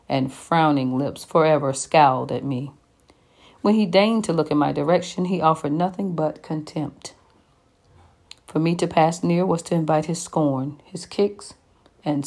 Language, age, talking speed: English, 50-69, 160 wpm